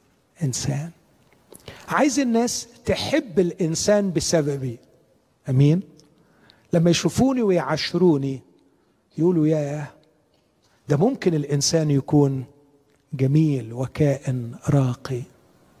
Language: Arabic